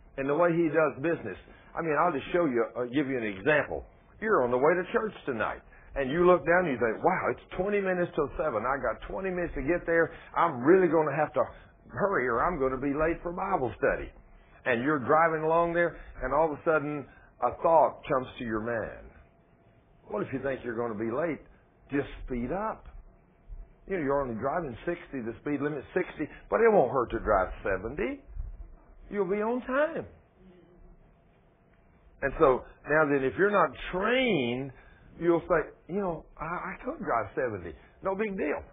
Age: 60-79